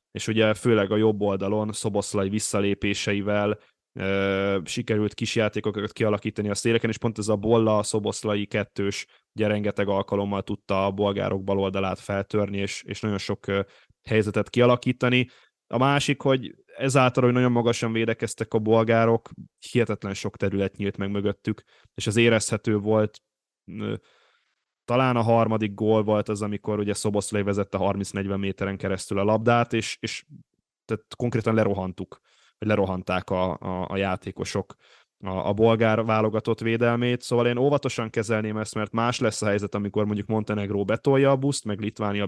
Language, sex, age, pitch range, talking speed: Hungarian, male, 10-29, 100-115 Hz, 150 wpm